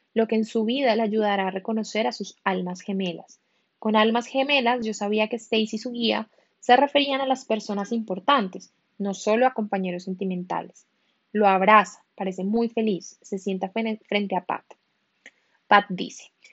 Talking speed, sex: 165 wpm, female